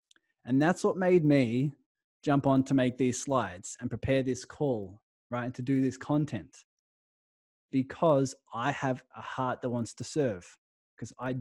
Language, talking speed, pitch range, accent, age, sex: English, 165 wpm, 115-140 Hz, Australian, 20-39, male